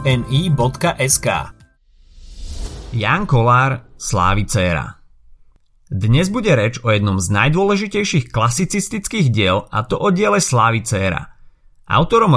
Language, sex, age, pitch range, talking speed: Slovak, male, 30-49, 100-135 Hz, 90 wpm